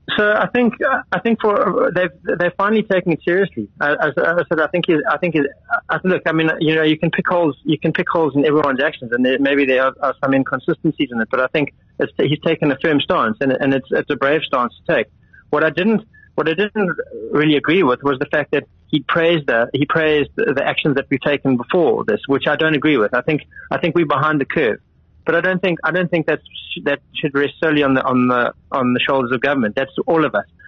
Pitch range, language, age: 135-170 Hz, English, 30-49